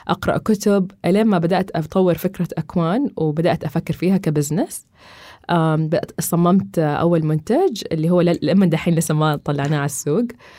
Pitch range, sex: 160-195 Hz, female